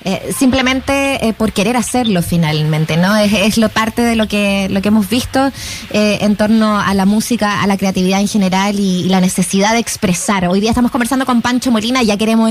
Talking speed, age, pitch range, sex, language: 215 wpm, 20-39, 205-260 Hz, female, Spanish